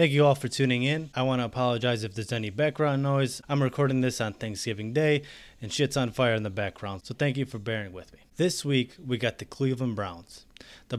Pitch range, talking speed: 115-145 Hz, 235 wpm